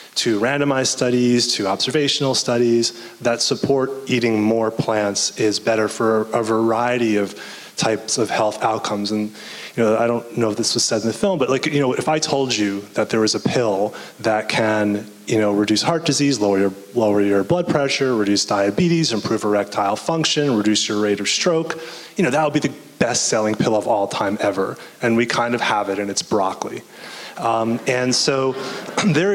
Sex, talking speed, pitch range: male, 195 wpm, 110-135 Hz